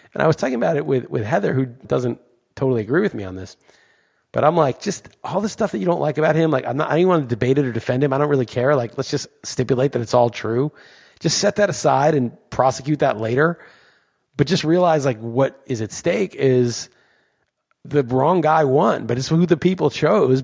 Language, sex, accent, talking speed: English, male, American, 240 wpm